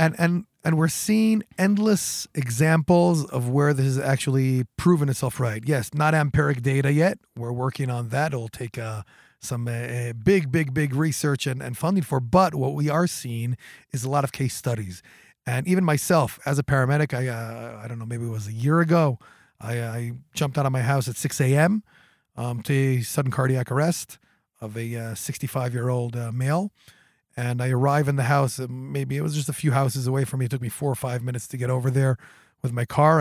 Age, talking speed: 30-49, 210 wpm